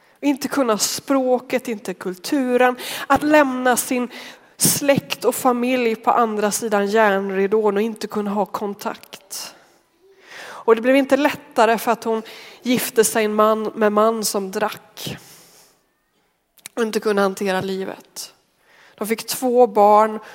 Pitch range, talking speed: 200-245 Hz, 130 wpm